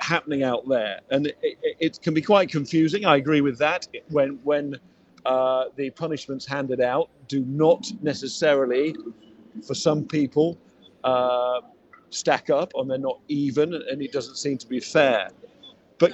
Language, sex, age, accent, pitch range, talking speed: English, male, 50-69, British, 130-165 Hz, 160 wpm